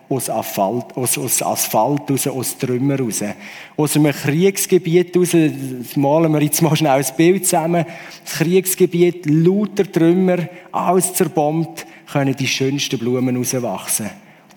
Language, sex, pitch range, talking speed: German, male, 135-180 Hz, 130 wpm